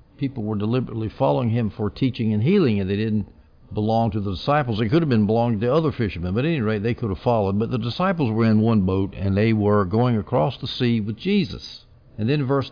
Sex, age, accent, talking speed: male, 60-79, American, 240 wpm